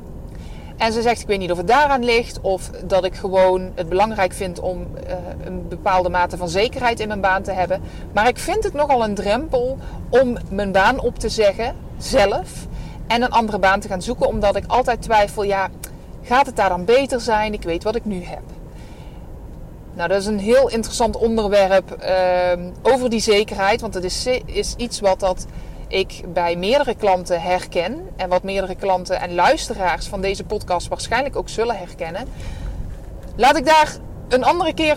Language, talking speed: Dutch, 185 wpm